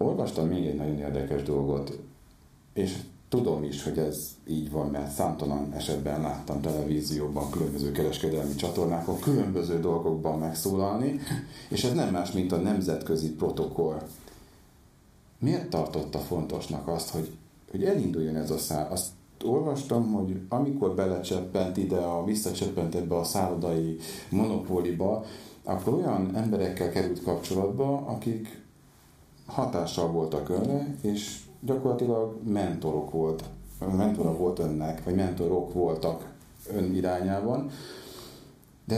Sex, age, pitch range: male, 40-59, 80-100 Hz